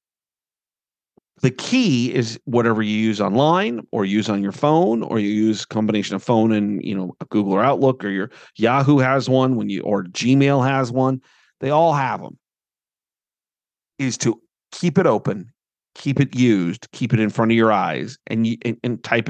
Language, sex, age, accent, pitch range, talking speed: English, male, 40-59, American, 105-130 Hz, 185 wpm